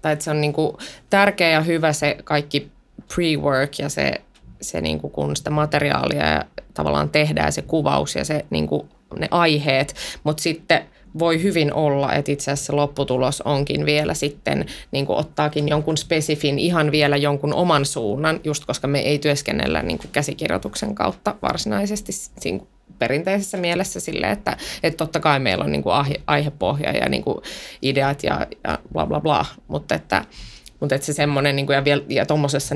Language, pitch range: Finnish, 140-165 Hz